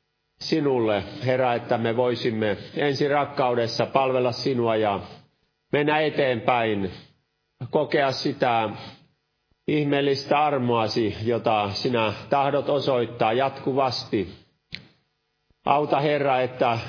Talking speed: 85 wpm